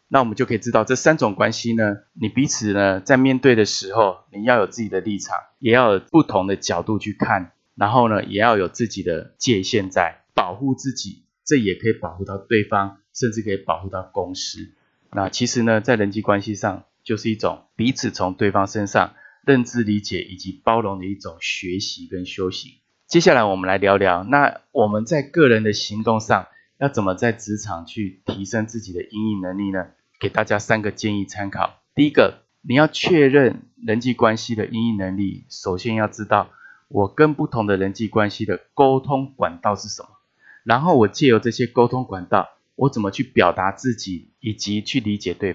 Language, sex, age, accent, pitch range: Chinese, male, 20-39, native, 100-125 Hz